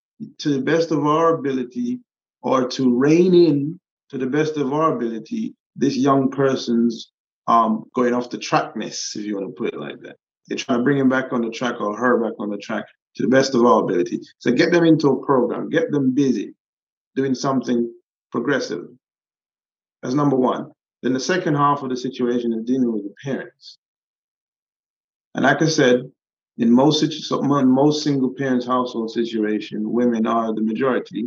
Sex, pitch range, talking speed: male, 120-145 Hz, 185 wpm